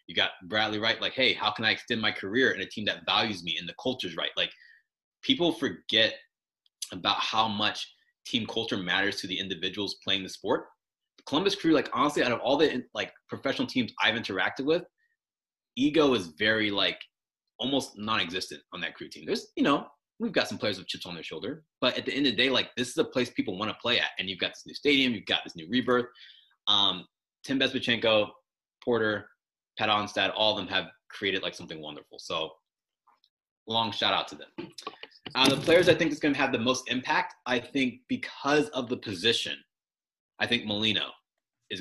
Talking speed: 205 wpm